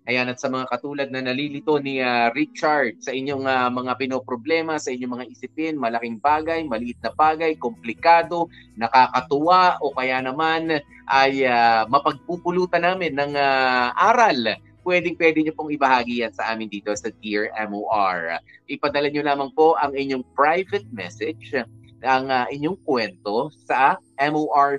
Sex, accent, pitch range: male, native, 120-145 Hz